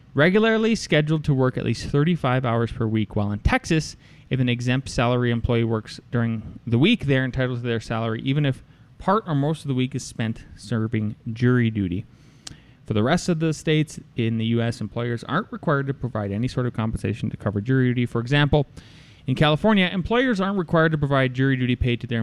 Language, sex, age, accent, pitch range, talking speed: English, male, 20-39, American, 115-150 Hz, 205 wpm